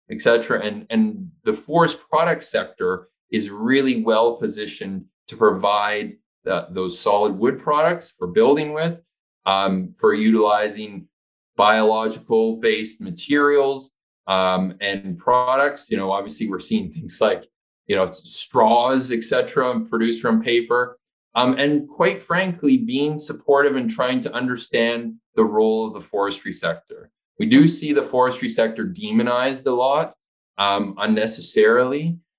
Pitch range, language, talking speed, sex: 110-170 Hz, English, 130 wpm, male